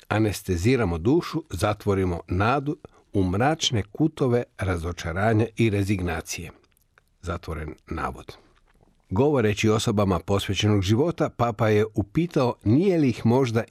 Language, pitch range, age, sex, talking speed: Croatian, 95-130 Hz, 50-69, male, 100 wpm